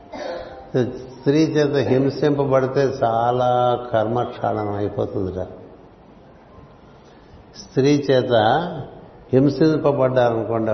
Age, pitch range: 60-79, 115-135 Hz